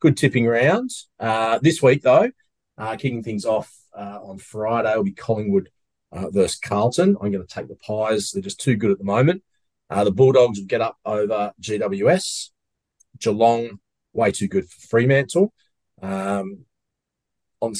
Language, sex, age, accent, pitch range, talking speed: English, male, 30-49, Australian, 100-145 Hz, 160 wpm